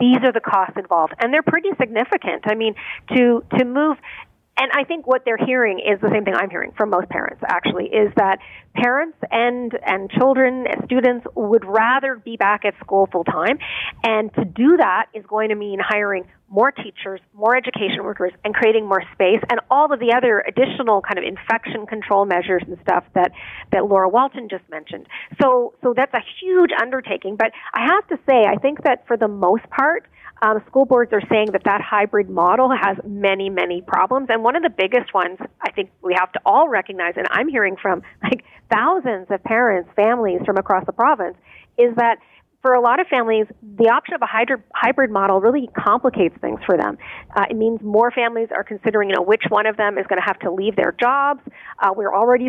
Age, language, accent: 40-59, English, American